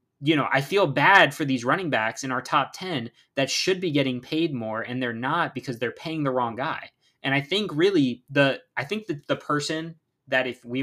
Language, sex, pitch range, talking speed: English, male, 125-150 Hz, 225 wpm